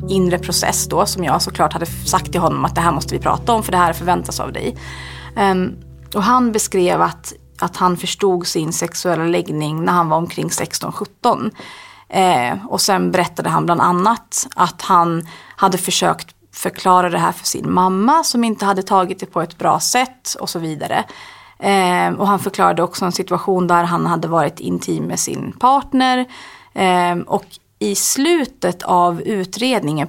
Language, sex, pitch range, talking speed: English, female, 170-215 Hz, 170 wpm